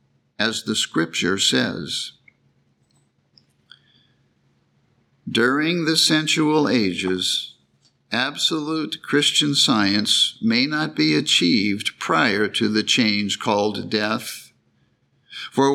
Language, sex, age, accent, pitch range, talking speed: English, male, 50-69, American, 105-145 Hz, 85 wpm